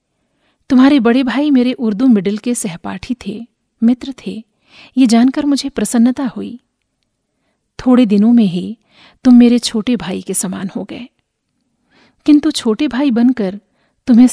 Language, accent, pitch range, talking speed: Hindi, native, 205-250 Hz, 140 wpm